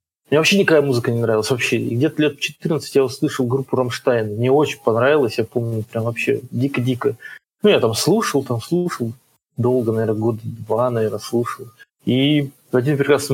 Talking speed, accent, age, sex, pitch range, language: 180 wpm, native, 20-39, male, 125-155 Hz, Russian